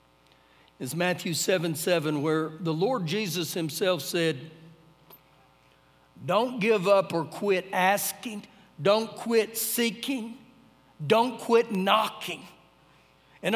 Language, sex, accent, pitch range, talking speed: English, male, American, 170-255 Hz, 100 wpm